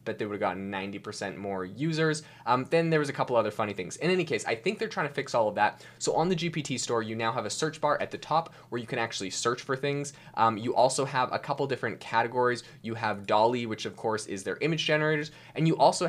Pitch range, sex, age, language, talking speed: 105-140 Hz, male, 20-39, English, 265 wpm